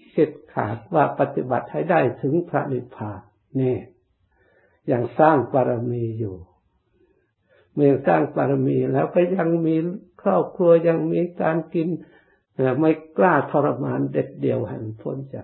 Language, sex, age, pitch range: Thai, male, 60-79, 125-160 Hz